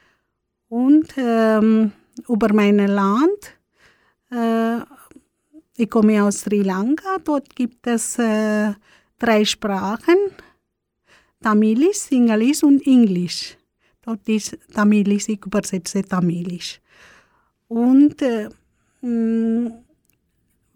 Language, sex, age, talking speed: German, female, 50-69, 85 wpm